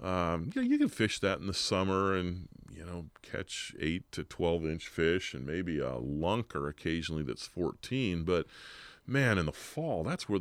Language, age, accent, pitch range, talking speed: English, 40-59, American, 85-115 Hz, 190 wpm